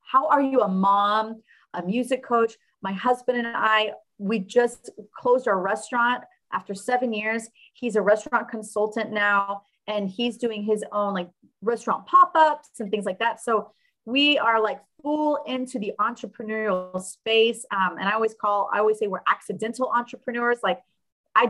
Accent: American